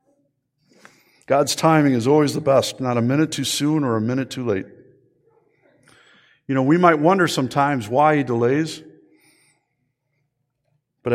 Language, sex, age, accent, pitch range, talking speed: English, male, 50-69, American, 120-145 Hz, 140 wpm